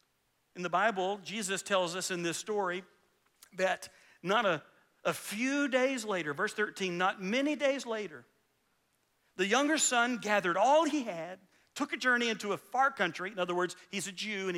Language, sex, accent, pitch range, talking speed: English, male, American, 165-230 Hz, 175 wpm